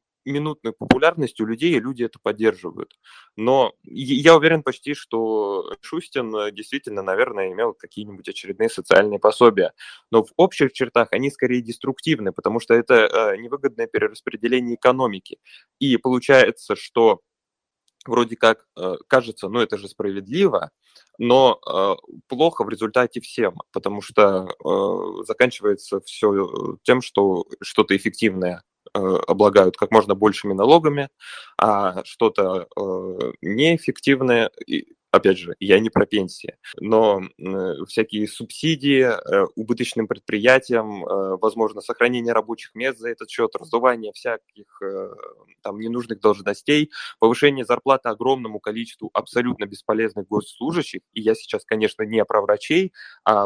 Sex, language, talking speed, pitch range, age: male, Russian, 120 wpm, 110-160 Hz, 20-39